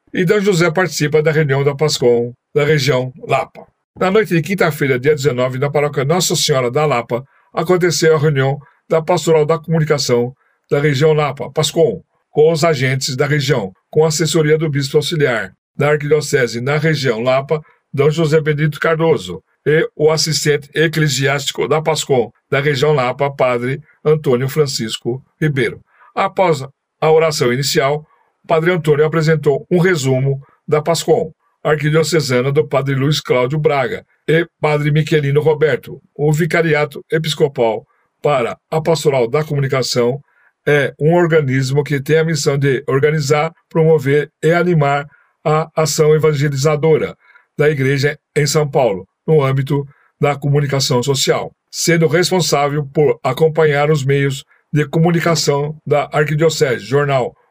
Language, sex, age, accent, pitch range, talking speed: Portuguese, male, 60-79, Brazilian, 140-160 Hz, 140 wpm